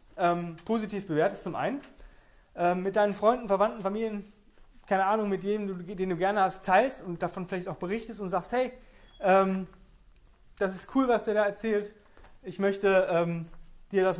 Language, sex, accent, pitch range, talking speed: German, male, German, 175-210 Hz, 175 wpm